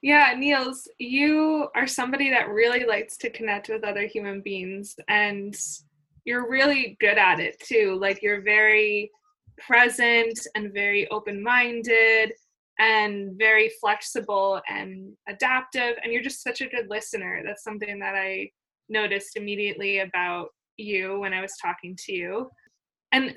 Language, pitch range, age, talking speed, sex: English, 205-265 Hz, 20-39, 140 wpm, female